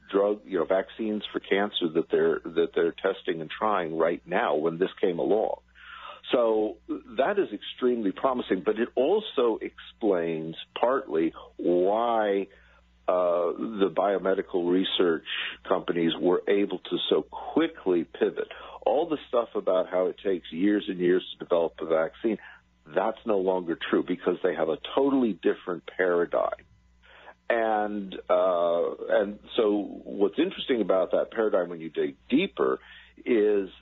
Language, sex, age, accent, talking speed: English, male, 50-69, American, 140 wpm